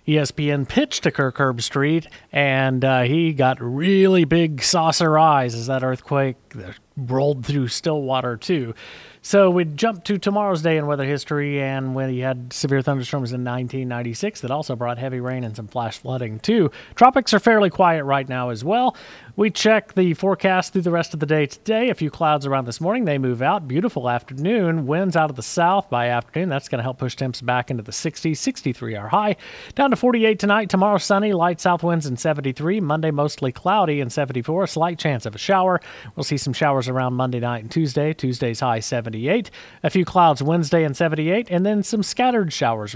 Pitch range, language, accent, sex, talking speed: 130-190 Hz, English, American, male, 200 wpm